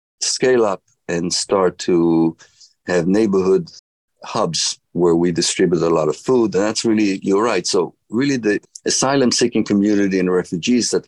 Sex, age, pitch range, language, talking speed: male, 50-69, 85-100 Hz, English, 155 wpm